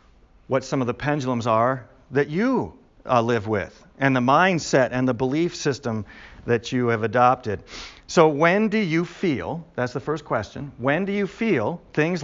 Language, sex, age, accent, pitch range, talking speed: English, male, 50-69, American, 100-145 Hz, 175 wpm